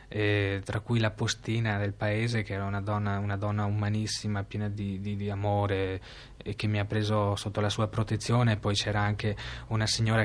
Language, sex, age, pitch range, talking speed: Italian, male, 20-39, 105-115 Hz, 200 wpm